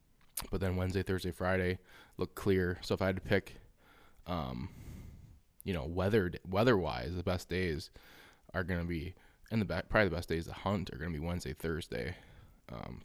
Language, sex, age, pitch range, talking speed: English, male, 20-39, 85-100 Hz, 190 wpm